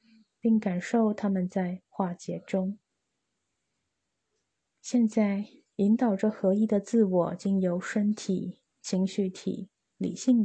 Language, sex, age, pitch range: Chinese, female, 20-39, 190-225 Hz